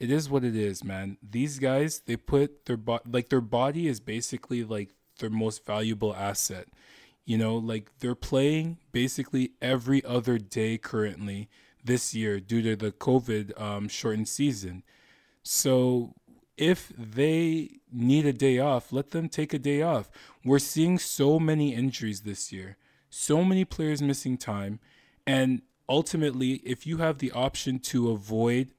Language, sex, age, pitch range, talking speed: English, male, 20-39, 115-140 Hz, 155 wpm